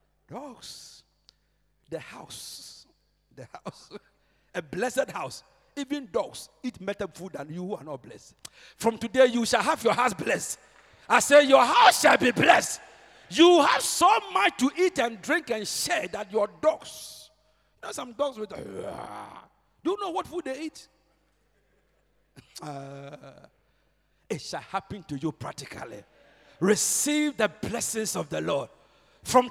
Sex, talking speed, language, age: male, 150 wpm, English, 50-69